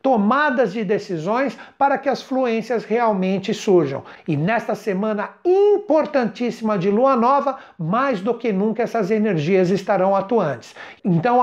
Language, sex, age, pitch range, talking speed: Portuguese, male, 60-79, 185-255 Hz, 130 wpm